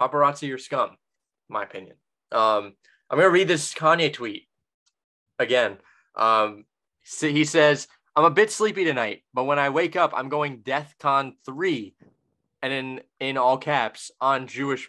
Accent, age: American, 20-39